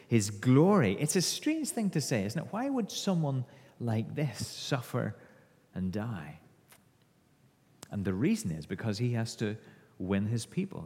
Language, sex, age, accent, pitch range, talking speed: English, male, 40-59, British, 110-150 Hz, 160 wpm